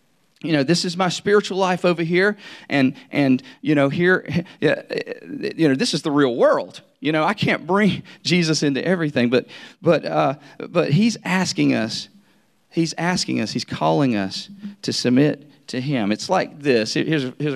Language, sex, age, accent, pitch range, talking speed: English, male, 40-59, American, 125-190 Hz, 175 wpm